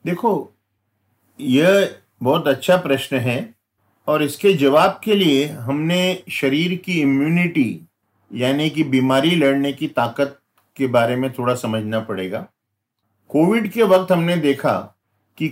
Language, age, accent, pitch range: Hindi, 50-69, native, 135-185 Hz